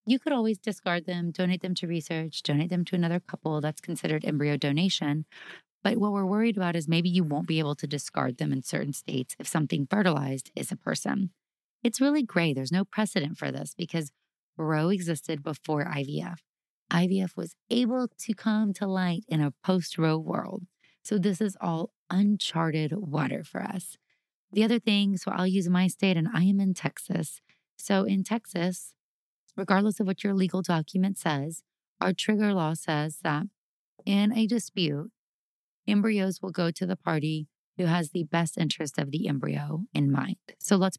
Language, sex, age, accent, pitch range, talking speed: English, female, 30-49, American, 155-195 Hz, 180 wpm